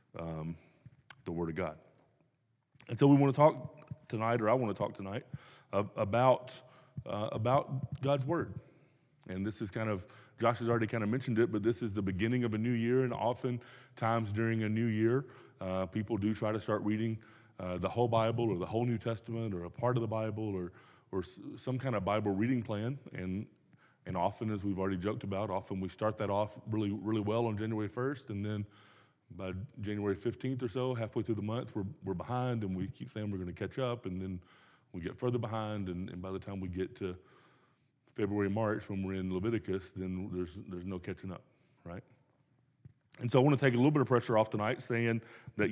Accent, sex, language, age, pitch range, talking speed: American, male, English, 30-49, 100-125 Hz, 220 wpm